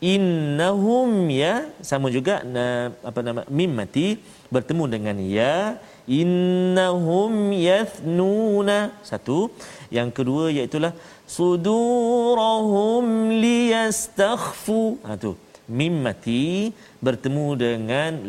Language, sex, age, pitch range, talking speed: Malayalam, male, 40-59, 135-225 Hz, 85 wpm